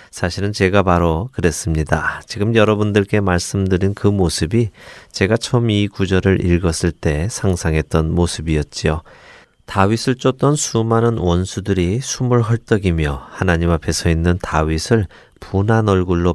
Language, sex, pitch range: Korean, male, 85-115 Hz